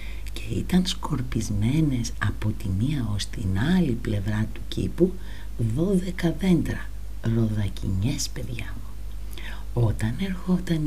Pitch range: 100-145 Hz